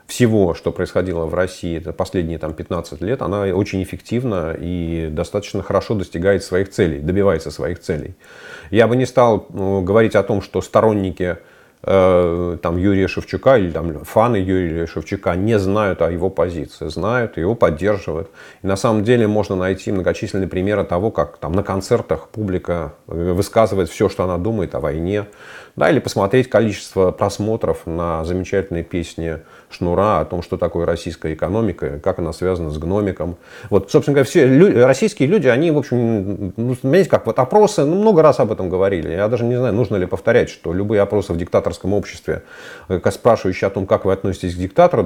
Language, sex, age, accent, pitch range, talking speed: Russian, male, 30-49, native, 90-110 Hz, 165 wpm